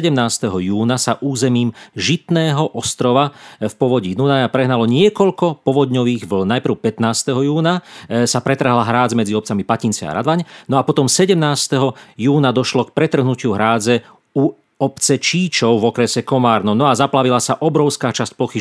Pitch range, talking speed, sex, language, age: 115-145 Hz, 150 wpm, male, Slovak, 40-59